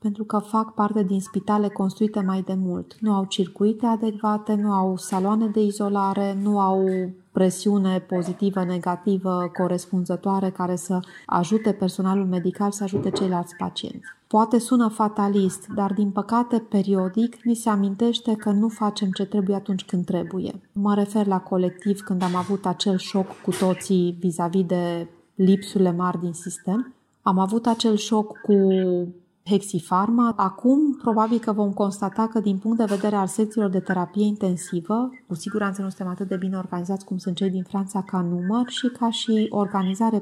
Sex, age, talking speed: female, 30-49, 160 wpm